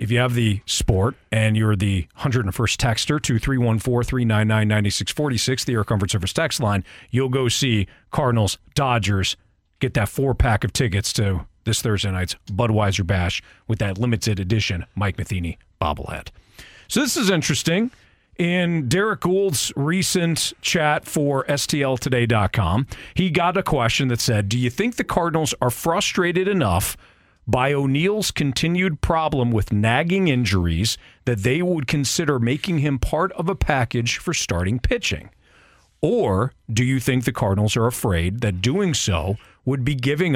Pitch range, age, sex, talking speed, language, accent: 105-145 Hz, 40-59, male, 165 wpm, English, American